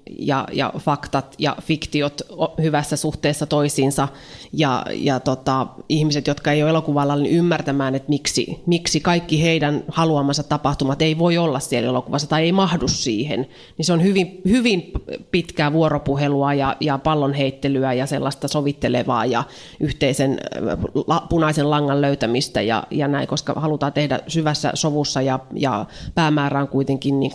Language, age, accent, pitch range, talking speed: Finnish, 30-49, native, 140-160 Hz, 145 wpm